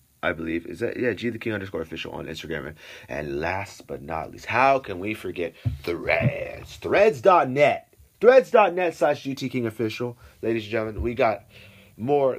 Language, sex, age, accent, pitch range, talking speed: English, male, 30-49, American, 100-145 Hz, 165 wpm